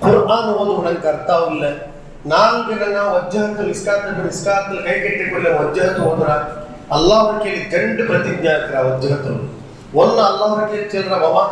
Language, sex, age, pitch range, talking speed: Urdu, male, 30-49, 155-210 Hz, 55 wpm